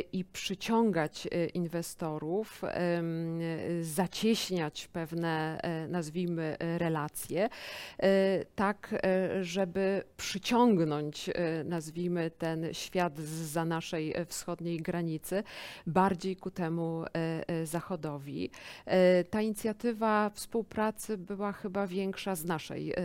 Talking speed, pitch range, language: 75 wpm, 165-190 Hz, Polish